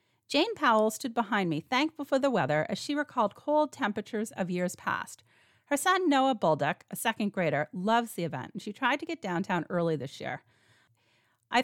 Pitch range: 160-255 Hz